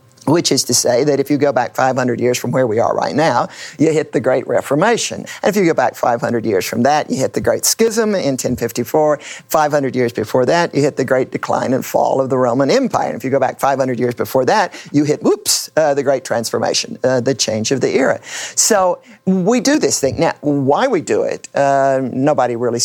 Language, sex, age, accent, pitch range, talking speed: English, male, 50-69, American, 125-150 Hz, 230 wpm